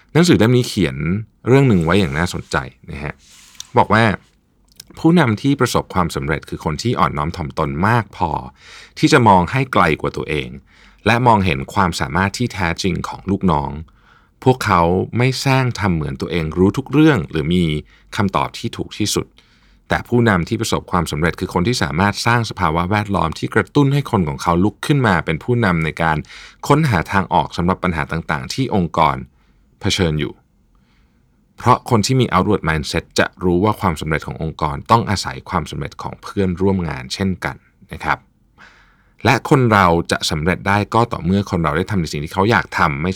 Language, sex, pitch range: Thai, male, 80-110 Hz